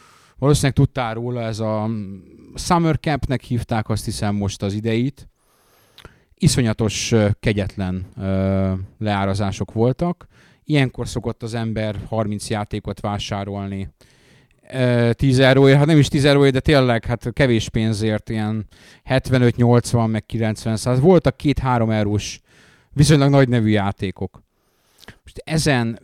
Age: 30-49